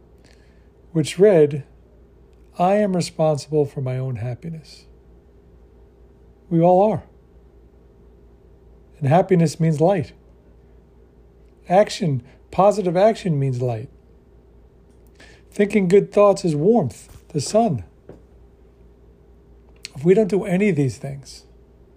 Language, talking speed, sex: English, 100 wpm, male